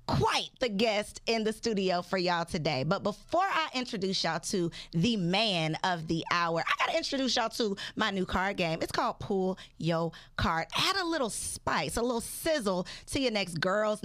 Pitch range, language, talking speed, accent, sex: 165-250 Hz, English, 190 wpm, American, female